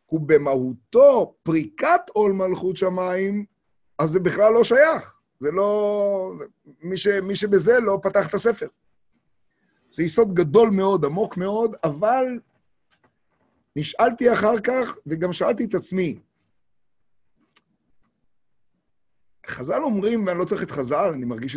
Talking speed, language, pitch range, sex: 120 wpm, Hebrew, 145-220 Hz, male